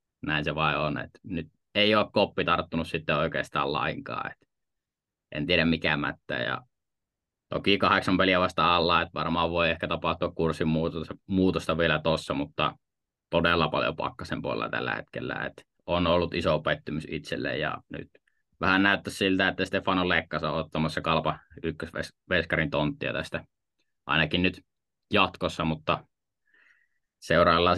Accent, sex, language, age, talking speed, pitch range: native, male, Finnish, 20-39, 140 wpm, 80-90 Hz